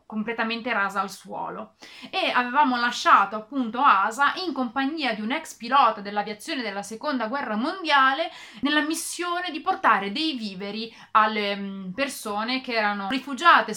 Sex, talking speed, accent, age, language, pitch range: female, 135 wpm, native, 30-49, Italian, 210-285 Hz